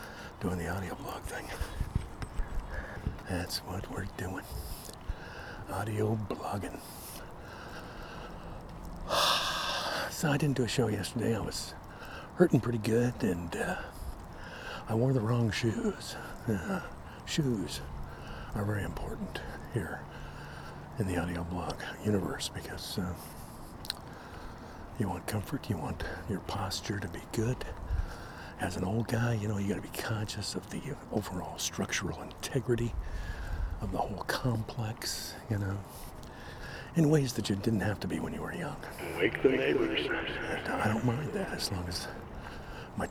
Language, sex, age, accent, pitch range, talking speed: English, male, 60-79, American, 90-115 Hz, 135 wpm